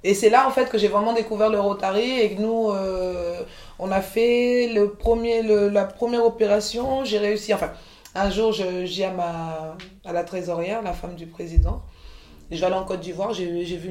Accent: French